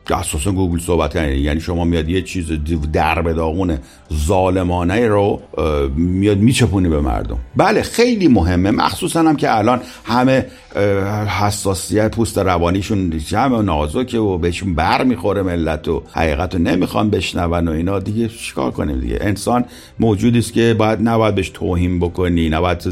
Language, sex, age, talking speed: Persian, male, 50-69, 145 wpm